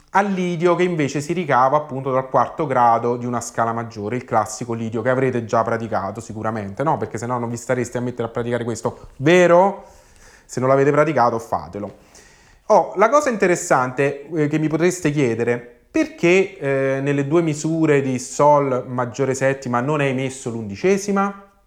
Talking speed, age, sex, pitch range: 170 wpm, 30-49, male, 125-165 Hz